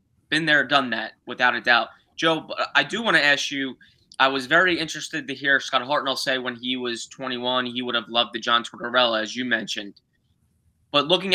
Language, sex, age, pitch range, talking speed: English, male, 20-39, 120-150 Hz, 205 wpm